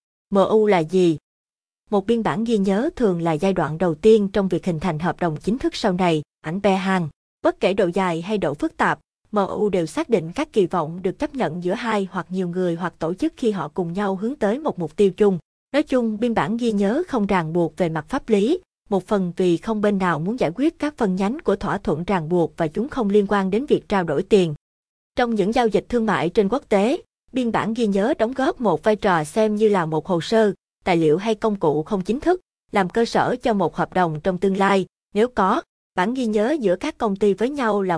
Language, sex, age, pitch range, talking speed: Vietnamese, female, 20-39, 175-225 Hz, 250 wpm